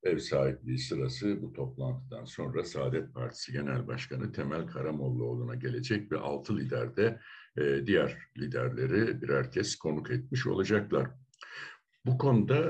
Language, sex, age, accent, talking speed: Turkish, male, 60-79, native, 120 wpm